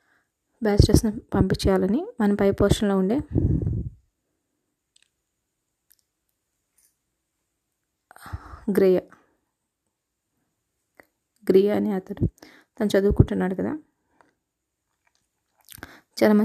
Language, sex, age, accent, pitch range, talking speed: Telugu, female, 20-39, native, 200-240 Hz, 50 wpm